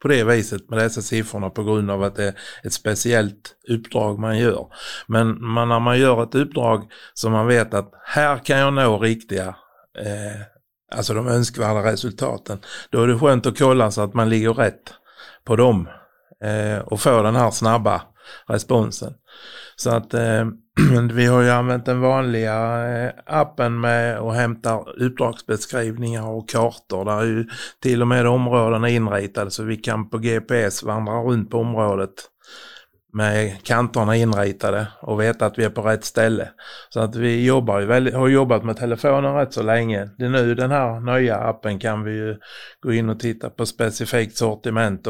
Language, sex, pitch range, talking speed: Swedish, male, 110-120 Hz, 175 wpm